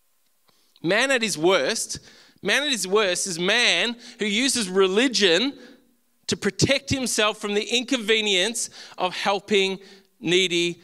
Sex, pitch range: male, 180-230 Hz